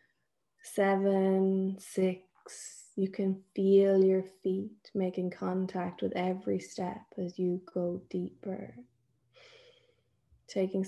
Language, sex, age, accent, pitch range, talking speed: English, female, 20-39, Irish, 180-200 Hz, 95 wpm